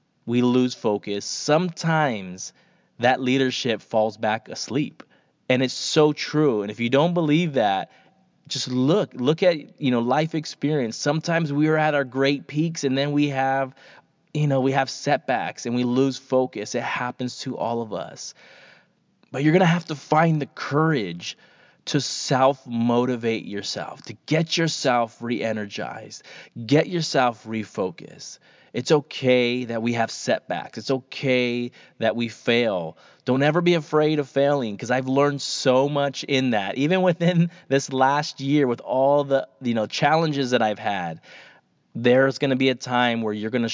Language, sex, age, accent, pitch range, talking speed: English, male, 20-39, American, 120-150 Hz, 160 wpm